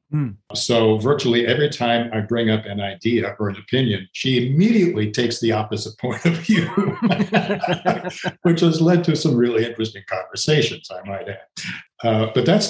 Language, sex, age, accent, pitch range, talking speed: English, male, 50-69, American, 105-125 Hz, 160 wpm